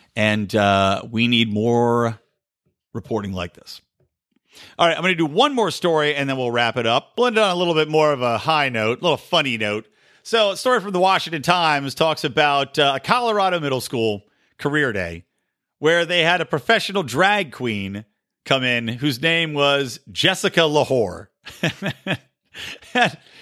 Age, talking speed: 40-59, 175 wpm